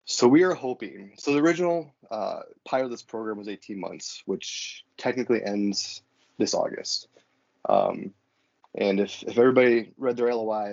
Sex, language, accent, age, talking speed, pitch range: male, English, American, 20-39, 155 wpm, 105-120 Hz